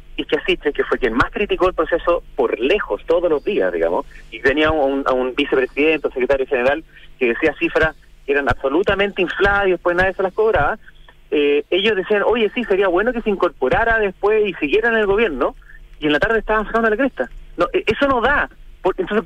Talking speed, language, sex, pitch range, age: 210 wpm, Spanish, male, 150-210 Hz, 30-49